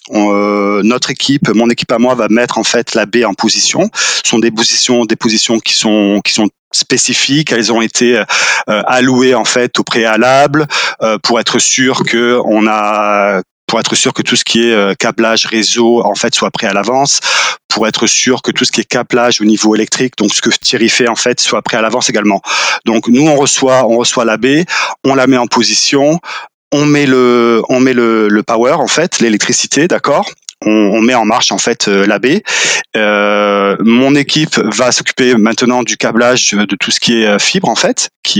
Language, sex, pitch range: French, male, 105-125 Hz